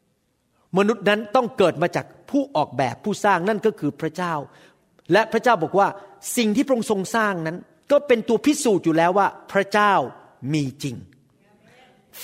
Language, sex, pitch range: Thai, male, 165-240 Hz